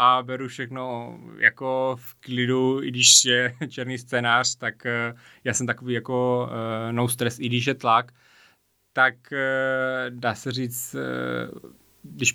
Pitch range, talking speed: 110-125 Hz, 130 wpm